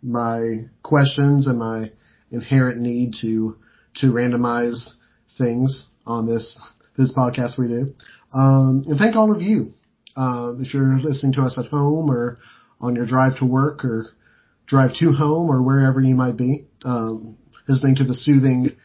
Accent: American